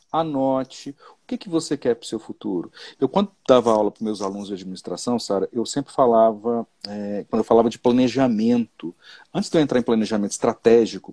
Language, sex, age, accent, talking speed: Portuguese, male, 40-59, Brazilian, 200 wpm